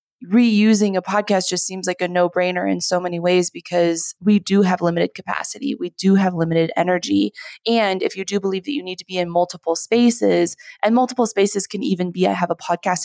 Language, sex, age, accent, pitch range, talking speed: English, female, 20-39, American, 180-210 Hz, 210 wpm